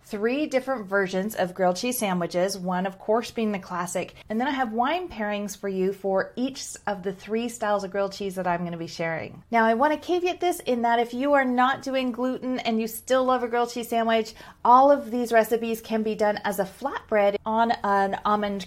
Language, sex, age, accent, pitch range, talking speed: English, female, 30-49, American, 185-235 Hz, 220 wpm